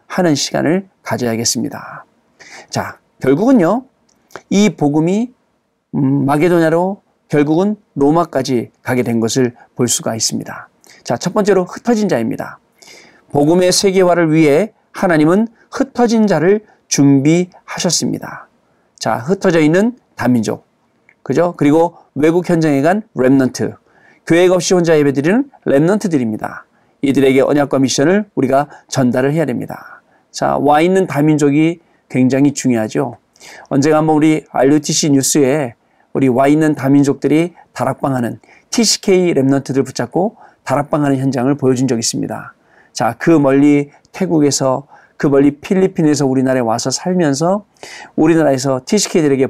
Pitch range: 135-180 Hz